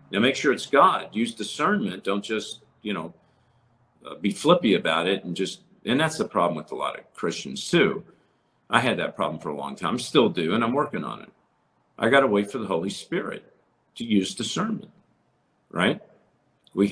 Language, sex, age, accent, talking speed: English, male, 50-69, American, 195 wpm